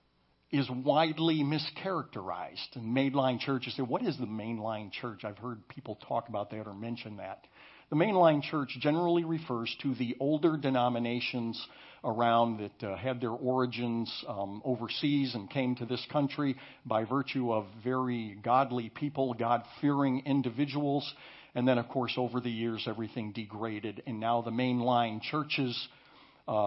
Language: English